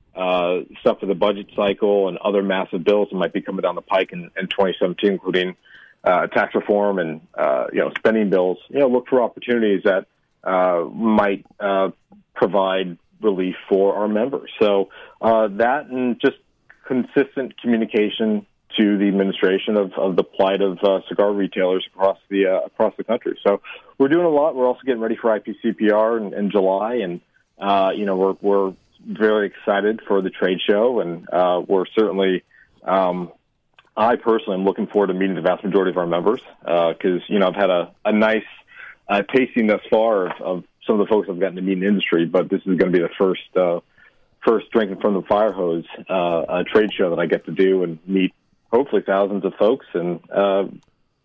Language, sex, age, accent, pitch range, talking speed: English, male, 40-59, American, 95-110 Hz, 200 wpm